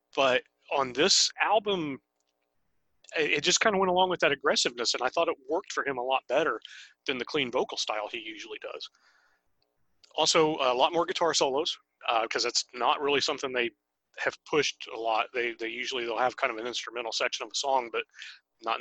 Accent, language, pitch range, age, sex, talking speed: American, English, 110-170 Hz, 30-49, male, 200 wpm